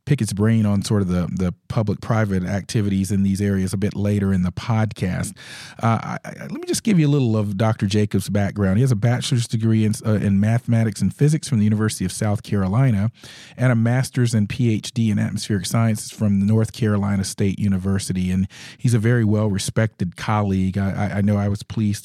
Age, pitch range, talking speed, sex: 40-59, 100-120 Hz, 210 wpm, male